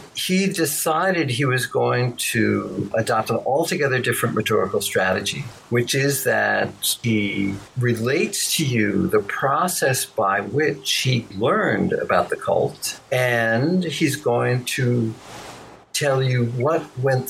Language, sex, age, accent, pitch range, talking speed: English, male, 60-79, American, 115-145 Hz, 125 wpm